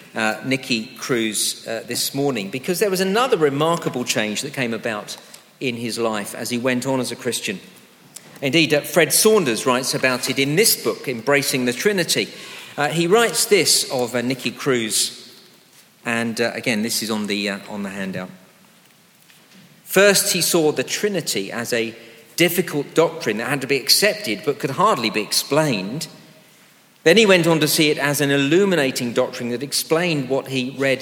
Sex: male